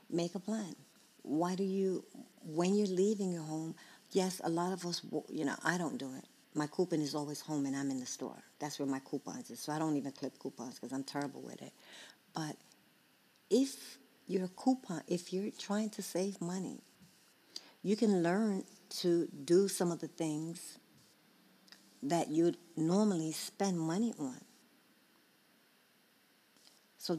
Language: English